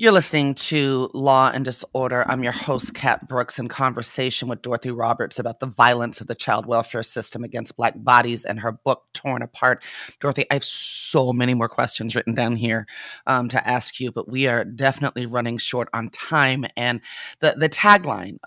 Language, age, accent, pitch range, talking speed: English, 30-49, American, 115-135 Hz, 185 wpm